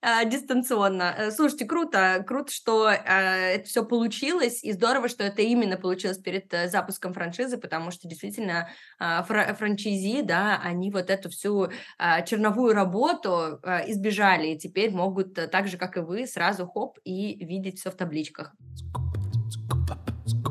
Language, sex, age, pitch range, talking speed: Russian, female, 20-39, 180-235 Hz, 130 wpm